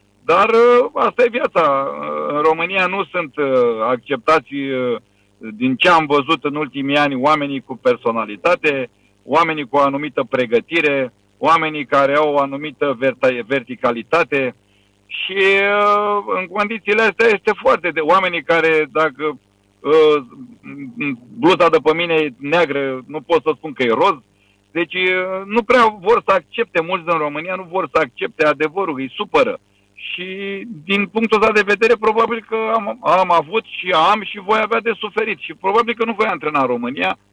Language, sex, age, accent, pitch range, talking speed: Romanian, male, 50-69, native, 130-200 Hz, 155 wpm